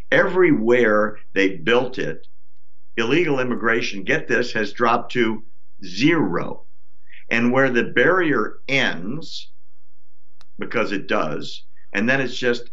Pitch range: 95-120 Hz